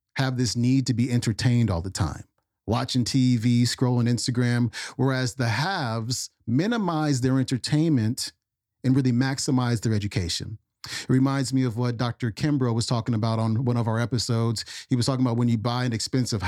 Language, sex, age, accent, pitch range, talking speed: English, male, 40-59, American, 115-130 Hz, 175 wpm